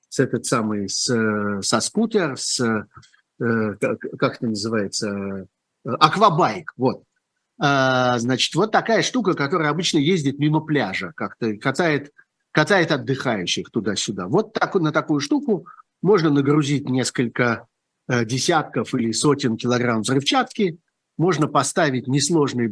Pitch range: 125-165 Hz